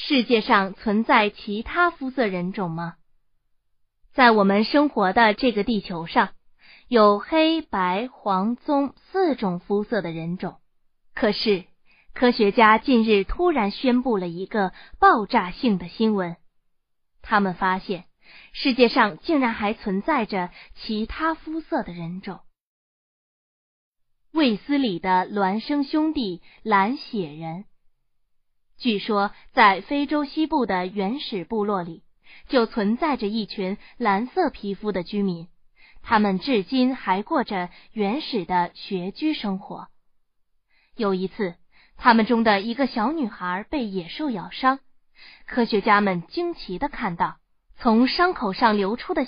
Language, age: Chinese, 20-39